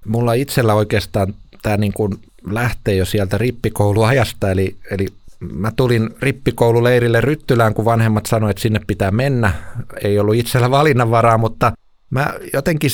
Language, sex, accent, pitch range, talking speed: Finnish, male, native, 105-125 Hz, 125 wpm